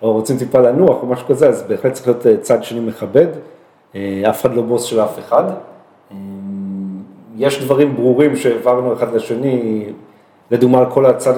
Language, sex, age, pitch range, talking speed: Hebrew, male, 40-59, 110-135 Hz, 165 wpm